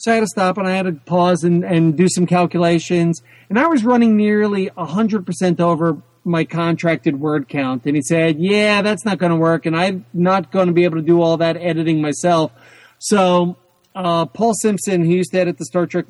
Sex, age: male, 40-59